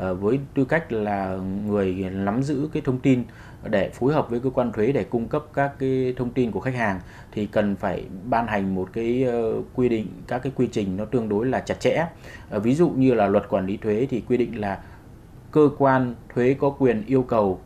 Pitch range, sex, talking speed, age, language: 105-135 Hz, male, 220 wpm, 20-39, Vietnamese